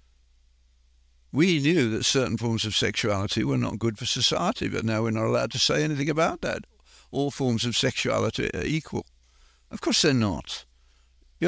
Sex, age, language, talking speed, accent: male, 60-79, English, 175 wpm, British